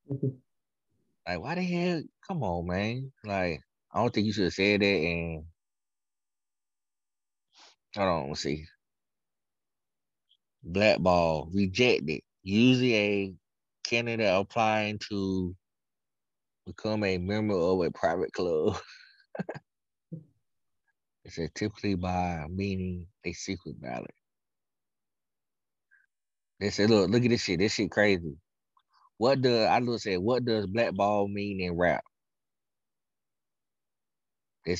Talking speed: 110 wpm